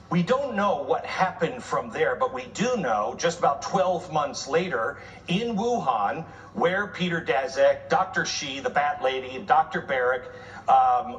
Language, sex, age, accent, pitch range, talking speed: English, male, 50-69, American, 170-245 Hz, 160 wpm